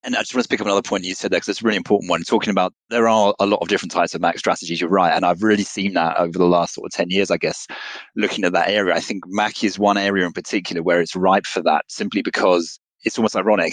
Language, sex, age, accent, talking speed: English, male, 30-49, British, 295 wpm